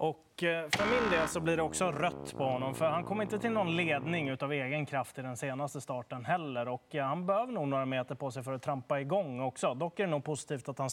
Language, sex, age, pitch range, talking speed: Swedish, male, 20-39, 135-160 Hz, 255 wpm